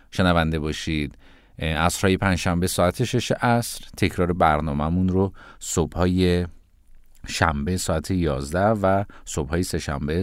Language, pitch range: Persian, 85-140 Hz